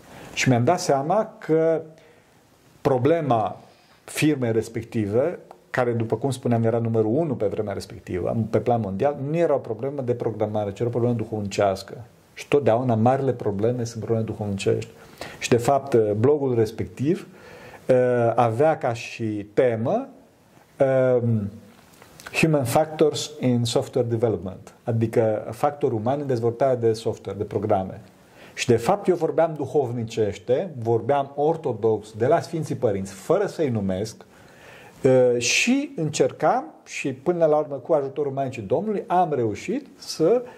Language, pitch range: Romanian, 115-155 Hz